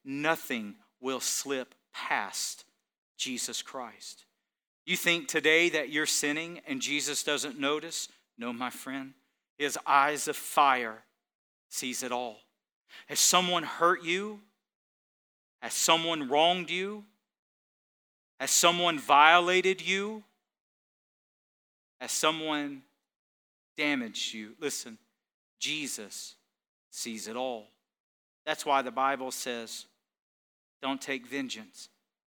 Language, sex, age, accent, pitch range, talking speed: English, male, 40-59, American, 130-190 Hz, 100 wpm